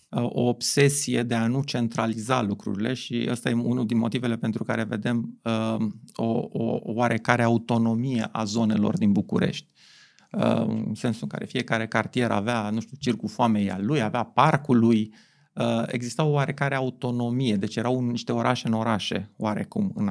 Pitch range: 110-145 Hz